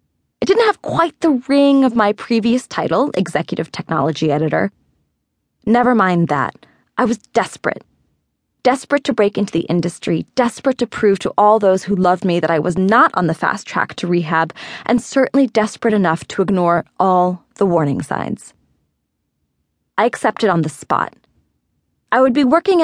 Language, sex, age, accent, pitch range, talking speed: English, female, 20-39, American, 170-255 Hz, 165 wpm